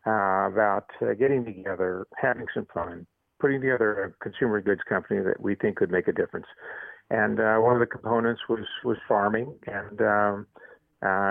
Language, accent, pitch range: English, American, 100-115 Hz